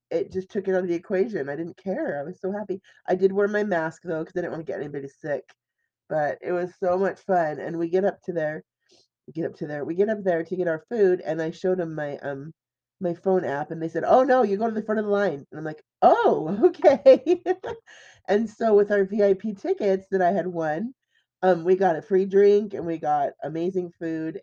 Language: English